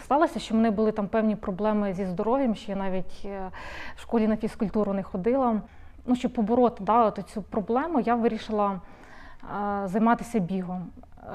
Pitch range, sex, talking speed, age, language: 200-230 Hz, female, 160 wpm, 20-39, Russian